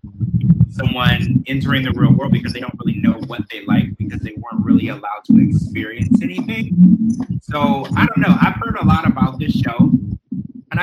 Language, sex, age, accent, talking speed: English, male, 20-39, American, 185 wpm